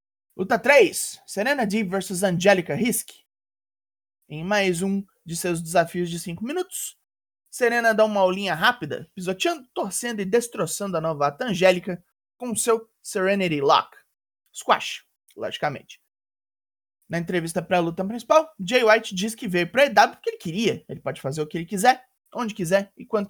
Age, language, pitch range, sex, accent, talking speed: 20-39, Portuguese, 165-215 Hz, male, Brazilian, 155 wpm